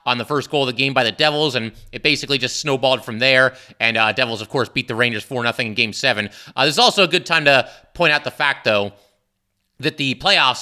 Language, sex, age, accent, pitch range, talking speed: English, male, 30-49, American, 120-140 Hz, 260 wpm